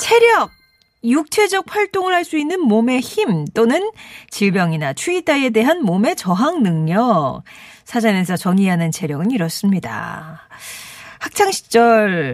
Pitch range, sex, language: 175-245 Hz, female, Korean